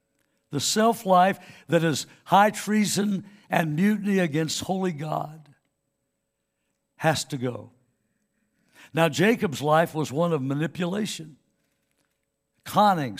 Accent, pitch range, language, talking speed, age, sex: American, 140-185 Hz, English, 100 wpm, 60-79, male